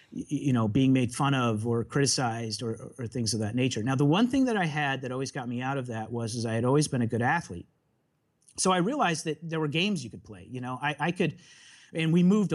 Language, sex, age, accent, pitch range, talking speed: English, male, 30-49, American, 125-160 Hz, 265 wpm